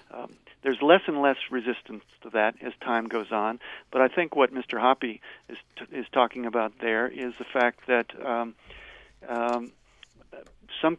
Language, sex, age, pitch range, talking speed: English, male, 50-69, 120-135 Hz, 170 wpm